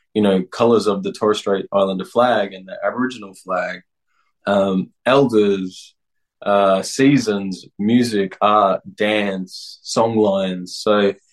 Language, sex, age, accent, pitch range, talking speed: English, male, 20-39, Australian, 95-120 Hz, 115 wpm